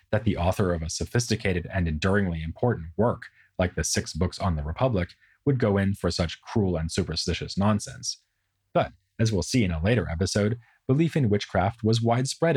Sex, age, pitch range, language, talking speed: male, 30-49, 85-110 Hz, English, 185 wpm